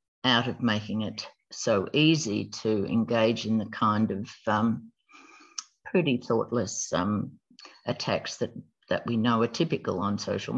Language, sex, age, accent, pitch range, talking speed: English, female, 50-69, Australian, 125-170 Hz, 140 wpm